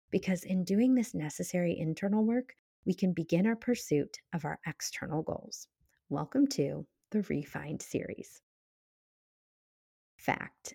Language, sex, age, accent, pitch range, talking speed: English, female, 30-49, American, 150-235 Hz, 125 wpm